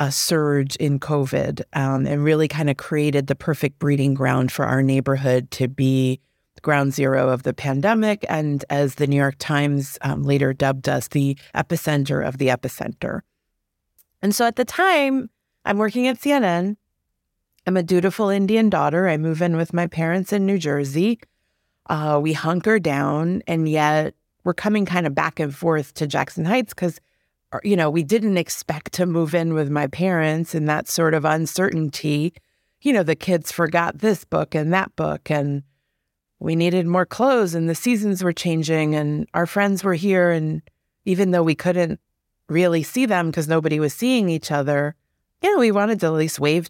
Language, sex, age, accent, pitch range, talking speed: English, female, 30-49, American, 145-185 Hz, 180 wpm